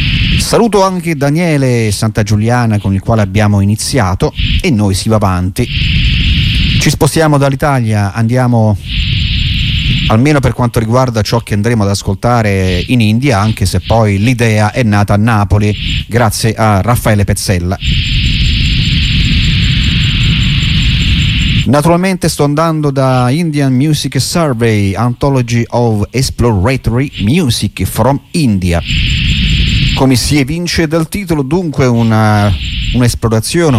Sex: male